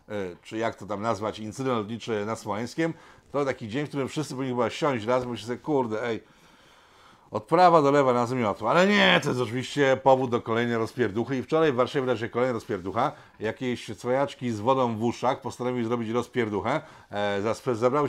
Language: Polish